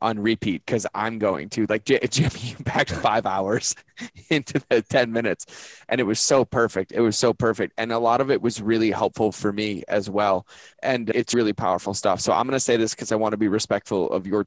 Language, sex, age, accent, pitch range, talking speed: English, male, 20-39, American, 100-115 Hz, 230 wpm